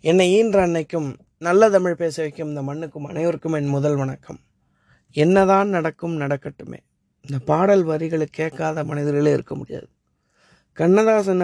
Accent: native